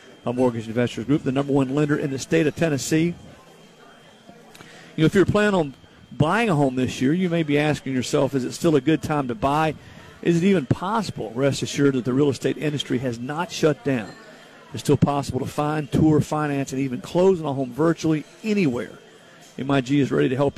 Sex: male